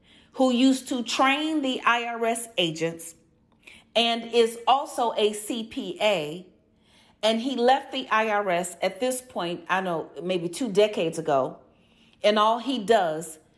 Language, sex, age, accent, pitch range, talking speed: English, female, 40-59, American, 190-250 Hz, 135 wpm